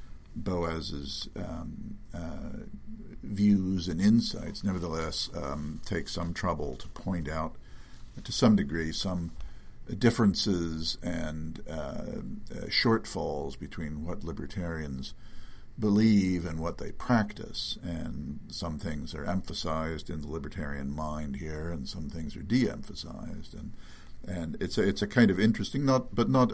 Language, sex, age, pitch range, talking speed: English, male, 50-69, 75-100 Hz, 130 wpm